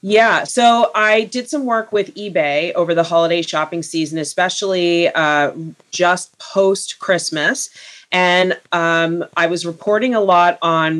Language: English